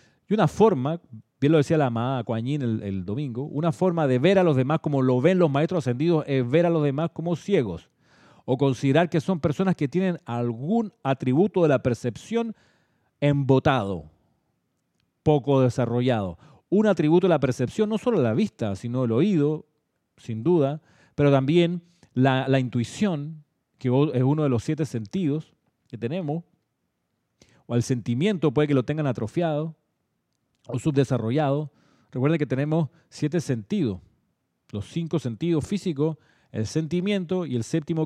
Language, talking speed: Spanish, 155 wpm